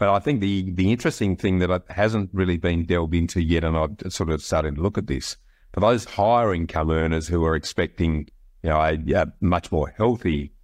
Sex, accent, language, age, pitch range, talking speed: male, Australian, English, 50-69, 80-95 Hz, 215 wpm